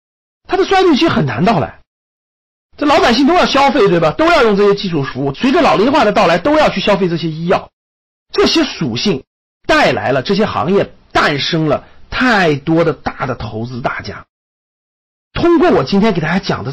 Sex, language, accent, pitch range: male, Chinese, native, 140-220 Hz